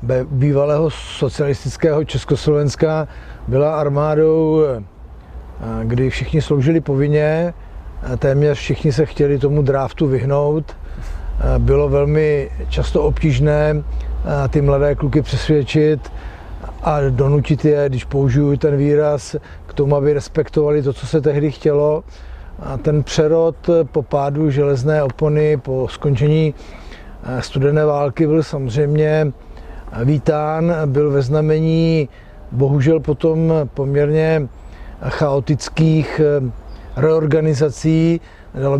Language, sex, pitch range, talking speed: Czech, male, 135-155 Hz, 95 wpm